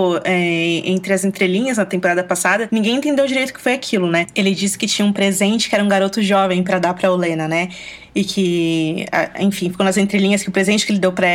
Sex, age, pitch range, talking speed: female, 20-39, 180-200 Hz, 225 wpm